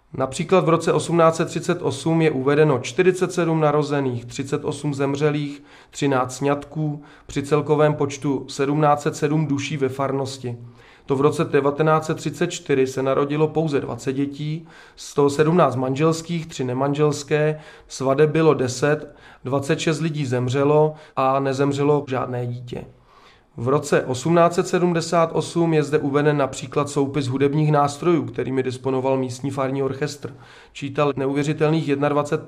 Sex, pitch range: male, 135-155 Hz